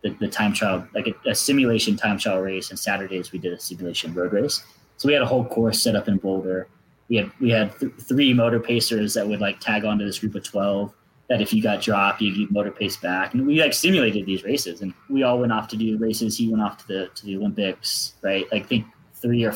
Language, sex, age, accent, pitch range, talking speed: English, male, 20-39, American, 95-130 Hz, 250 wpm